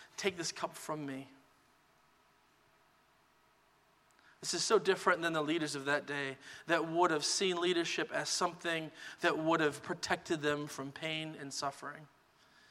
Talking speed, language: 145 wpm, English